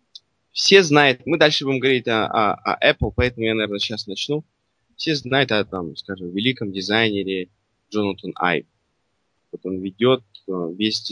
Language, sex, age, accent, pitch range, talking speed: Russian, male, 20-39, native, 100-135 Hz, 145 wpm